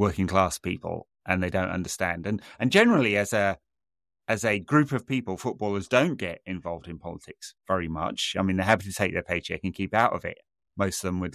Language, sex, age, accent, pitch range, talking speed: English, male, 30-49, British, 90-105 Hz, 215 wpm